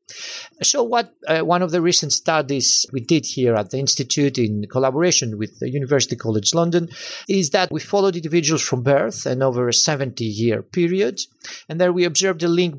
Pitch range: 120-155 Hz